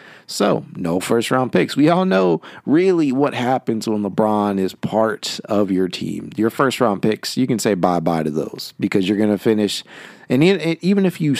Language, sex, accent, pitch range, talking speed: English, male, American, 100-125 Hz, 195 wpm